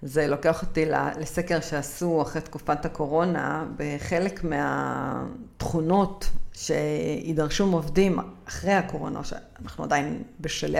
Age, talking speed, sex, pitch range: 50-69, 90 wpm, female, 155-205 Hz